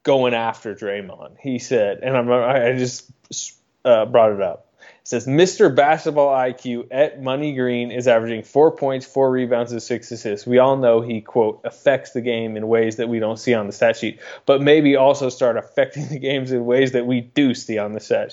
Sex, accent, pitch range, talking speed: male, American, 115-140 Hz, 205 wpm